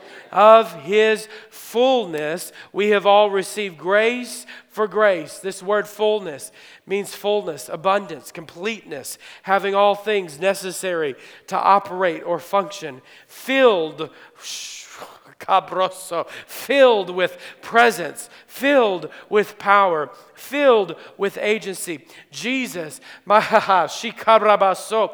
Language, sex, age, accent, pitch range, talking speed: English, male, 40-59, American, 195-240 Hz, 90 wpm